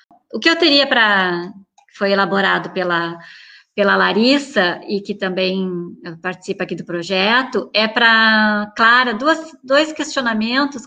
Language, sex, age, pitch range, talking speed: Portuguese, female, 20-39, 205-255 Hz, 125 wpm